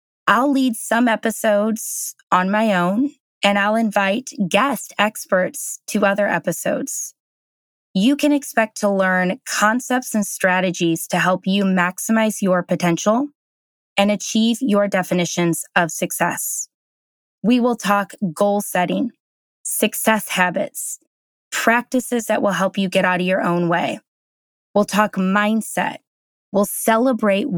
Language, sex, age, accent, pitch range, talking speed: English, female, 20-39, American, 190-230 Hz, 125 wpm